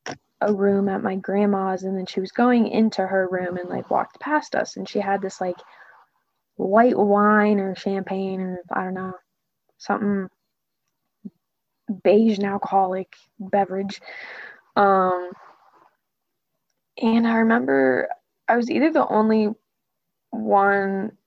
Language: Russian